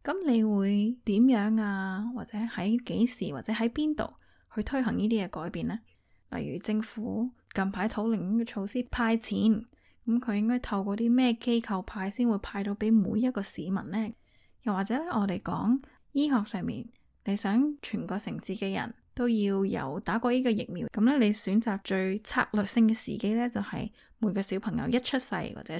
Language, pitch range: Chinese, 200-240 Hz